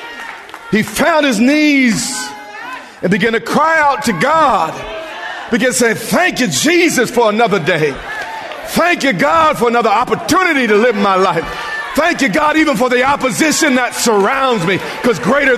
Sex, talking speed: male, 160 wpm